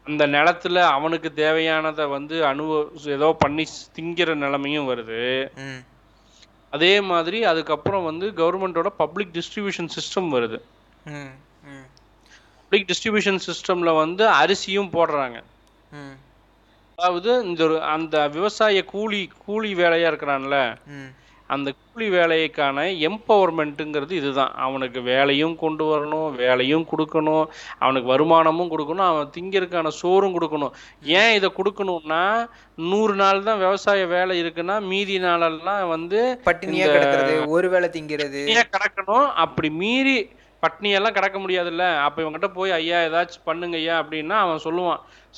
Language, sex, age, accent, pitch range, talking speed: Tamil, male, 20-39, native, 150-185 Hz, 110 wpm